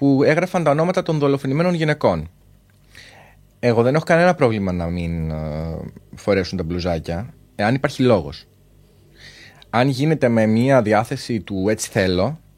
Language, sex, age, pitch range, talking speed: Greek, male, 30-49, 95-150 Hz, 135 wpm